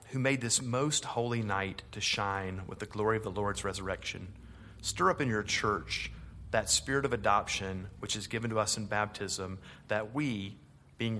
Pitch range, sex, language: 100-120 Hz, male, English